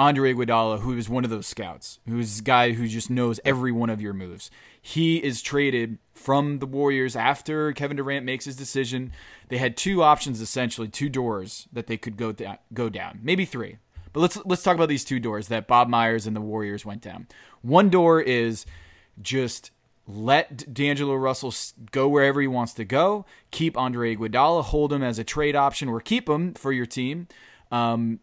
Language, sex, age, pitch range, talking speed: English, male, 20-39, 115-140 Hz, 195 wpm